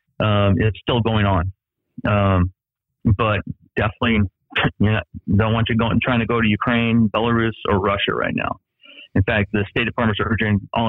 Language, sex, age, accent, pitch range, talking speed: English, male, 40-59, American, 95-115 Hz, 200 wpm